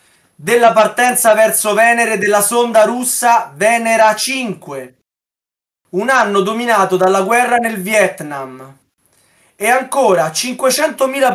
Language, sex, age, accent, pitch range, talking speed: Italian, male, 20-39, native, 185-255 Hz, 100 wpm